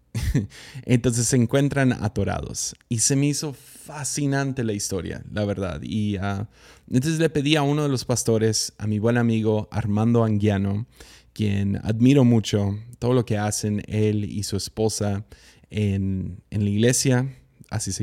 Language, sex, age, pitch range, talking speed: Spanish, male, 20-39, 100-120 Hz, 155 wpm